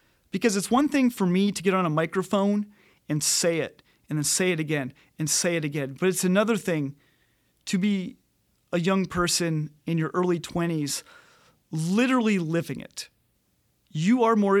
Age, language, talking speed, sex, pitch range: 30-49, English, 175 wpm, male, 155-205 Hz